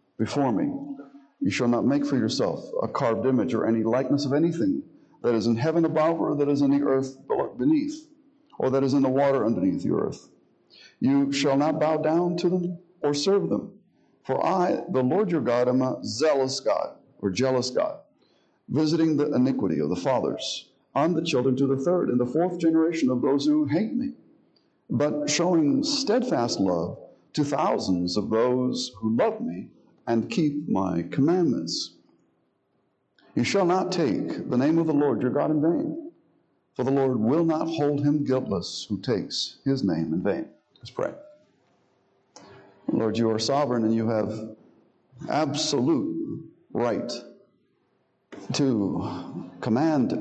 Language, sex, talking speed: English, male, 165 wpm